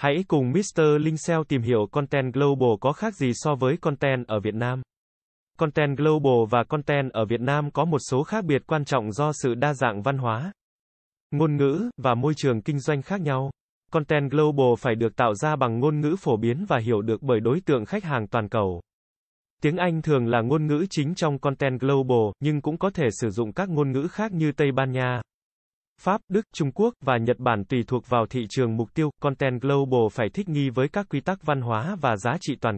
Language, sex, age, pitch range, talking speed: Vietnamese, male, 20-39, 125-155 Hz, 220 wpm